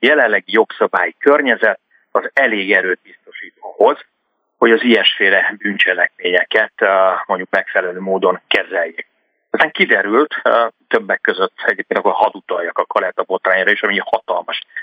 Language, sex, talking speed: Hungarian, male, 115 wpm